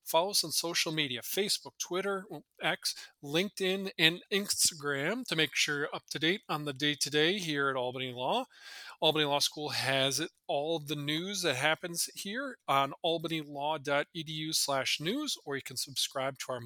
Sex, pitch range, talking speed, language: male, 135-170 Hz, 165 wpm, English